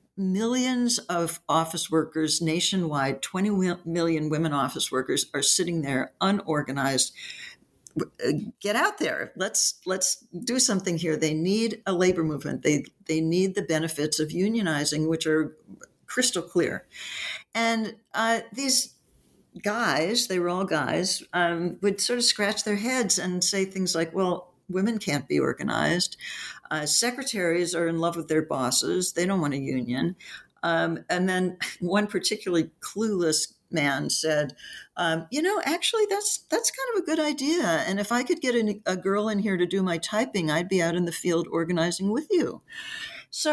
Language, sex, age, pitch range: English, female, 60-79, 165-230 Hz